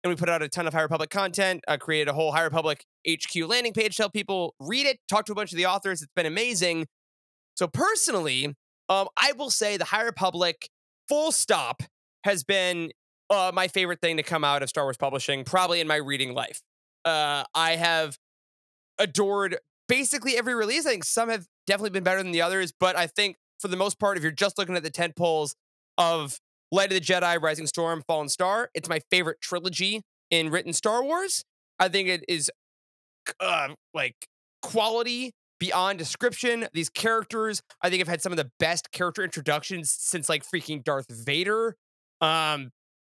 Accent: American